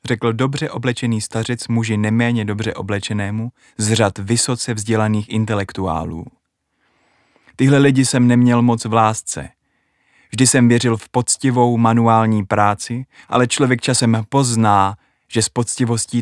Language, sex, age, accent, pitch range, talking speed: Czech, male, 20-39, native, 110-140 Hz, 125 wpm